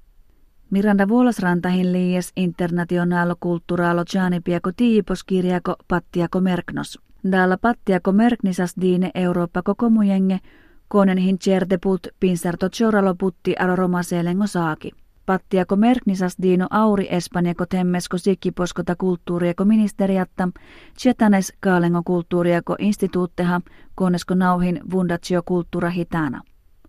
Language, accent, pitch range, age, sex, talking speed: Finnish, native, 175-195 Hz, 30-49, female, 85 wpm